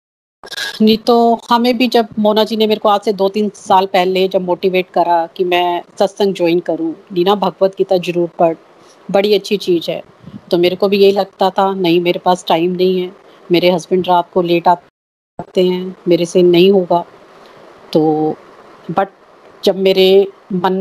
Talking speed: 180 wpm